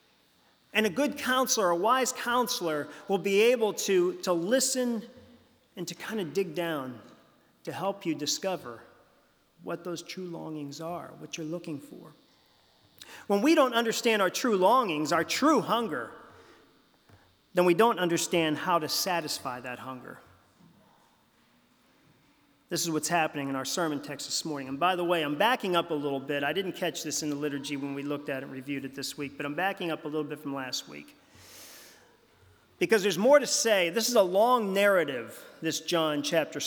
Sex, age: male, 40-59